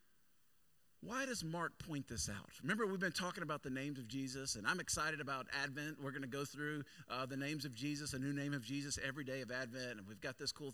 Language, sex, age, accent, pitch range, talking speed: English, male, 40-59, American, 145-205 Hz, 245 wpm